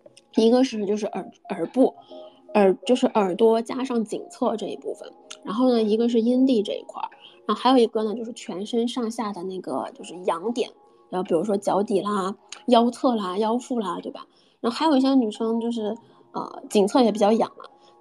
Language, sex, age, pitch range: Chinese, female, 20-39, 215-260 Hz